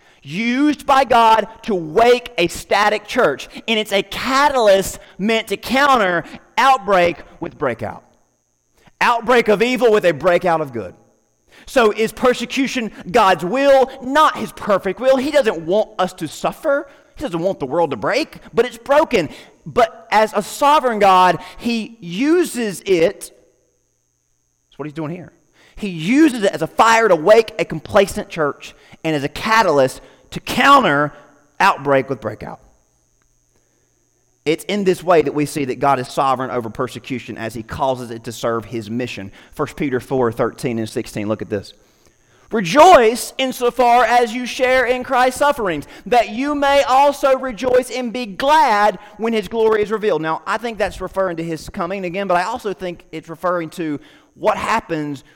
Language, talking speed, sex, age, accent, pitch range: English, 165 wpm, male, 30-49, American, 145-240 Hz